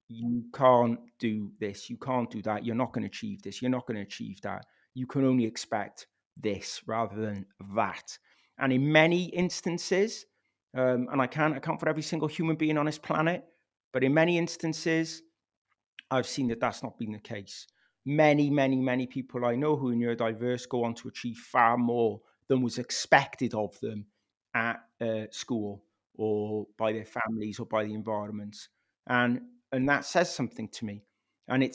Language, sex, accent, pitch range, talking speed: English, male, British, 115-150 Hz, 185 wpm